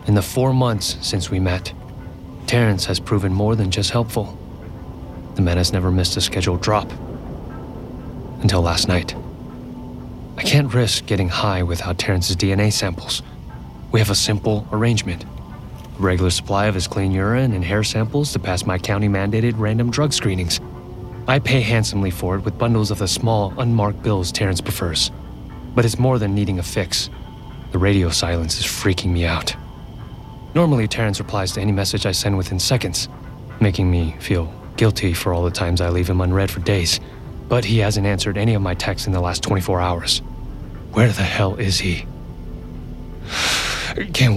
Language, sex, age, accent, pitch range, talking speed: English, male, 30-49, American, 90-115 Hz, 170 wpm